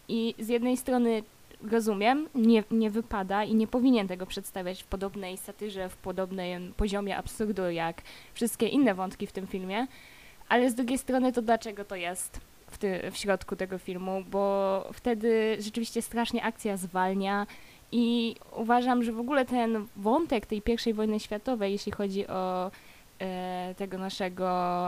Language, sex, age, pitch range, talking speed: Polish, female, 20-39, 200-240 Hz, 155 wpm